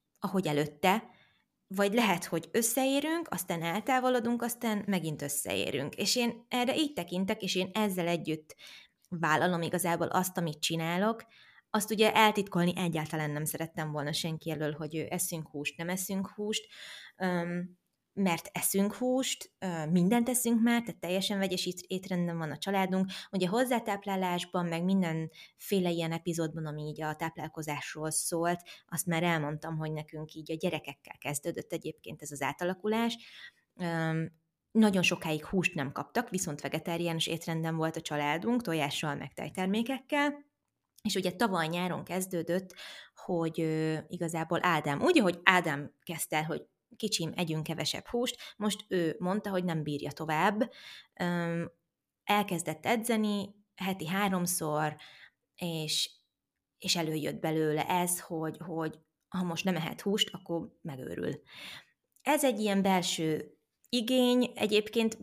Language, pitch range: Hungarian, 160-205 Hz